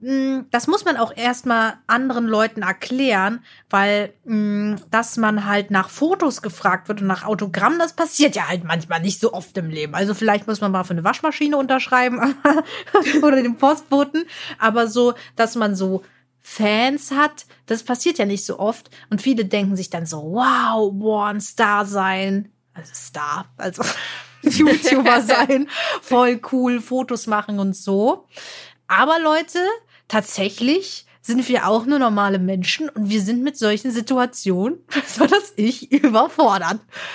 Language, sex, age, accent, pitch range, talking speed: German, female, 30-49, German, 200-270 Hz, 155 wpm